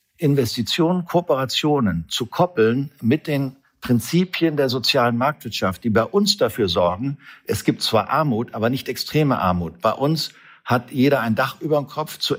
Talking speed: 160 wpm